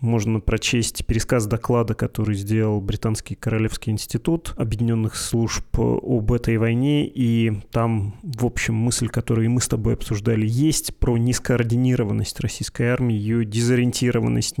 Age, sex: 20-39, male